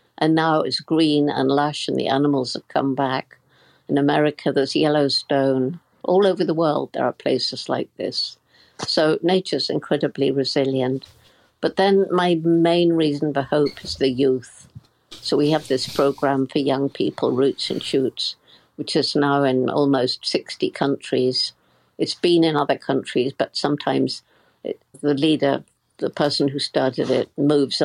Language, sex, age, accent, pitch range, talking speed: English, female, 60-79, British, 135-160 Hz, 155 wpm